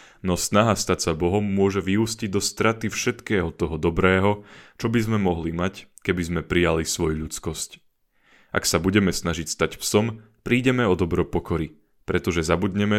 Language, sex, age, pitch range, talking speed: Slovak, male, 30-49, 85-100 Hz, 155 wpm